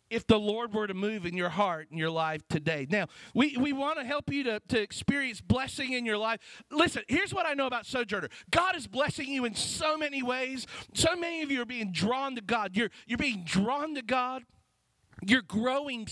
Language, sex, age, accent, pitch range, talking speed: English, male, 40-59, American, 170-250 Hz, 220 wpm